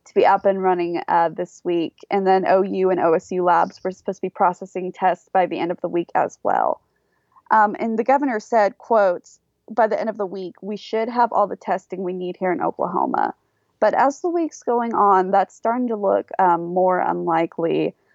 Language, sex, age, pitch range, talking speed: English, female, 20-39, 185-230 Hz, 210 wpm